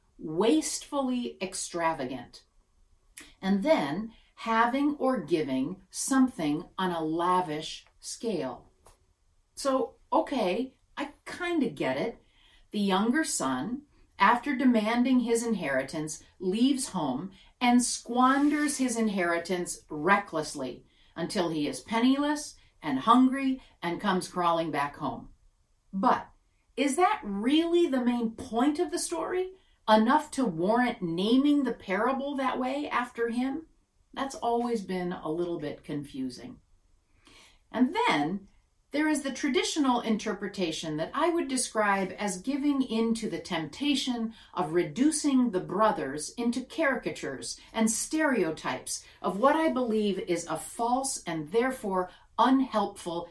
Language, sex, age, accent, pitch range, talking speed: English, female, 40-59, American, 170-265 Hz, 120 wpm